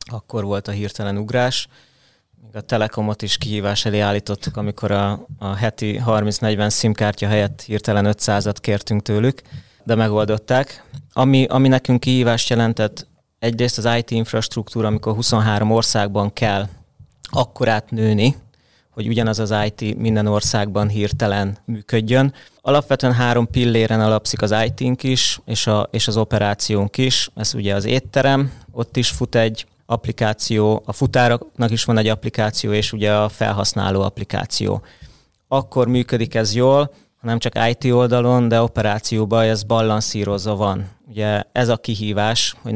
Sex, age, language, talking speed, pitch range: male, 30-49, Hungarian, 135 wpm, 105-120 Hz